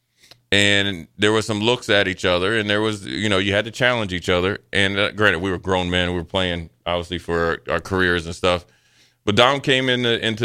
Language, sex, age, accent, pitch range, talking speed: English, male, 30-49, American, 100-120 Hz, 240 wpm